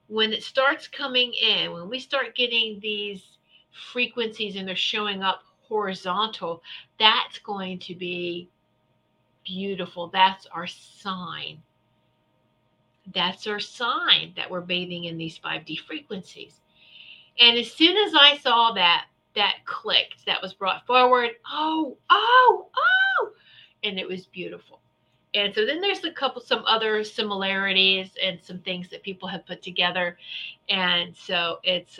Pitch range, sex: 185-245 Hz, female